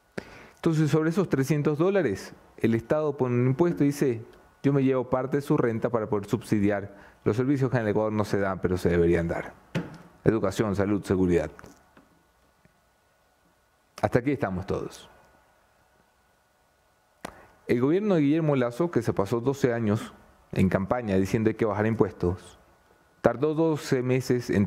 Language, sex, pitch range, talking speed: English, male, 110-155 Hz, 155 wpm